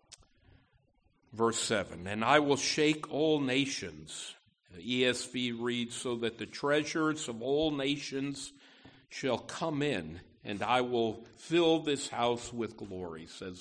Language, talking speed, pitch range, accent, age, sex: English, 130 wpm, 115-150 Hz, American, 50-69, male